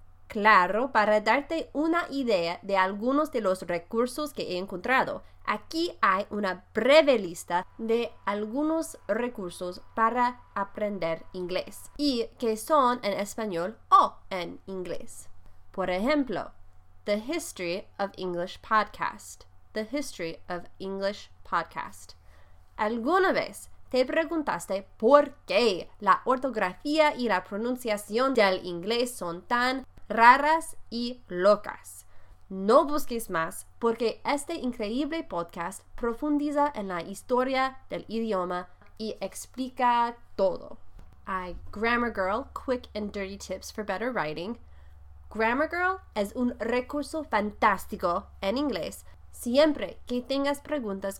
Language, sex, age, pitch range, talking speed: Spanish, female, 20-39, 185-265 Hz, 115 wpm